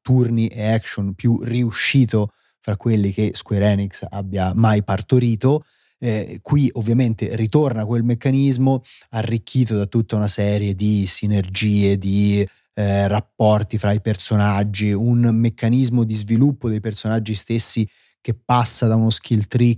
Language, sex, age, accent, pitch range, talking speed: Italian, male, 30-49, native, 100-125 Hz, 135 wpm